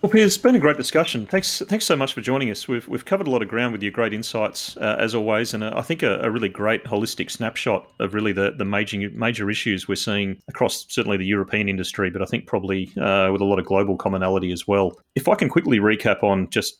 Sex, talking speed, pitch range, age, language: male, 255 wpm, 95-105 Hz, 30-49, English